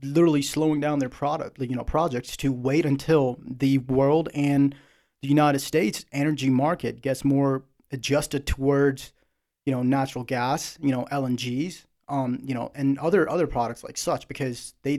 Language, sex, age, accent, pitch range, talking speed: English, male, 30-49, American, 130-145 Hz, 165 wpm